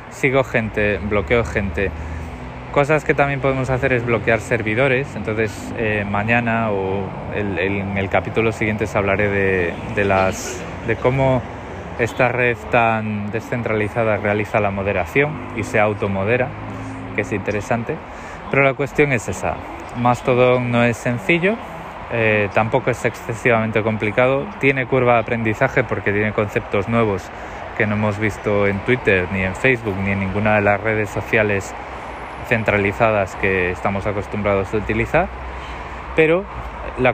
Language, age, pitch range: Spanish, 20-39, 95-120 Hz